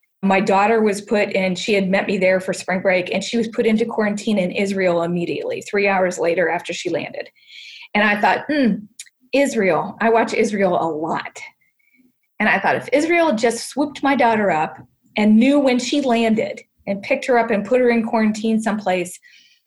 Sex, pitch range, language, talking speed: female, 205-255 Hz, English, 190 wpm